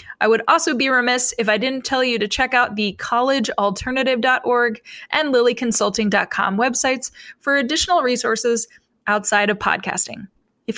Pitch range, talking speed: 205-260 Hz, 140 wpm